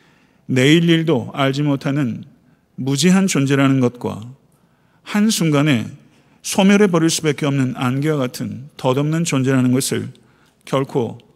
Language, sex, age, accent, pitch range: Korean, male, 50-69, native, 125-155 Hz